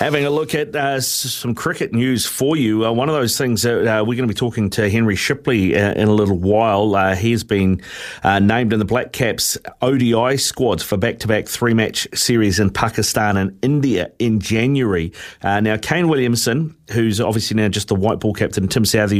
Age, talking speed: 30-49, 200 wpm